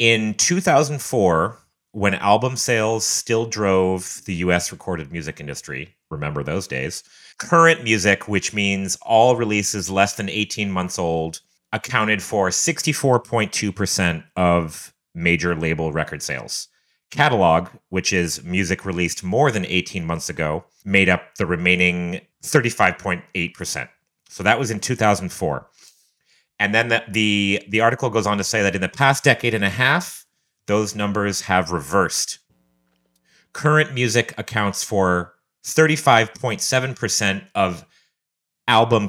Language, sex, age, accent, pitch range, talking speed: English, male, 30-49, American, 90-115 Hz, 125 wpm